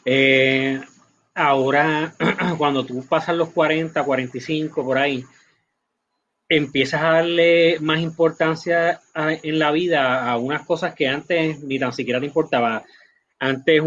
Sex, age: male, 30-49